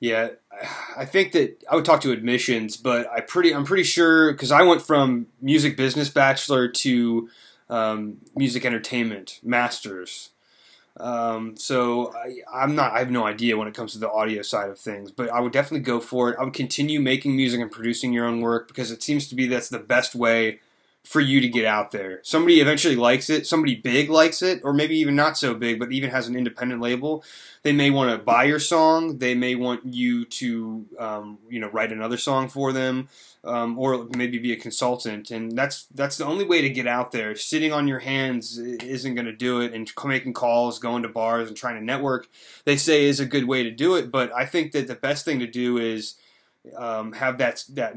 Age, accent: 20-39, American